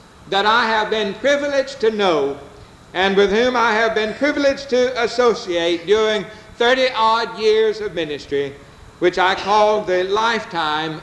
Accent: American